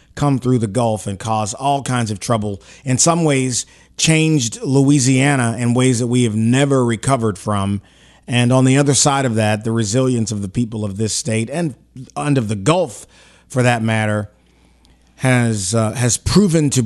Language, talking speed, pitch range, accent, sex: English, 180 wpm, 100-145 Hz, American, male